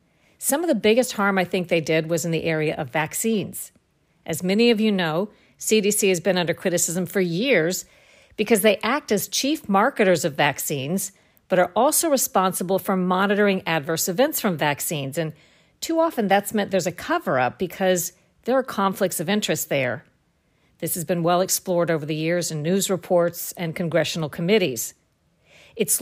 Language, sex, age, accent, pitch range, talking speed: English, female, 50-69, American, 165-210 Hz, 175 wpm